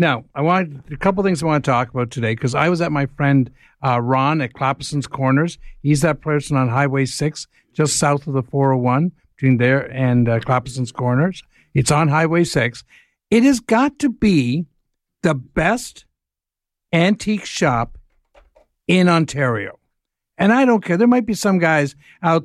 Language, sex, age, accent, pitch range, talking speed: English, male, 60-79, American, 135-185 Hz, 175 wpm